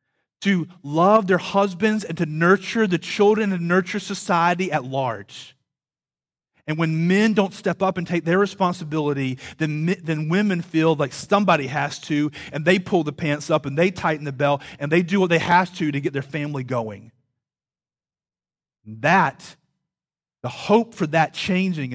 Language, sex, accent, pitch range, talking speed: English, male, American, 140-180 Hz, 165 wpm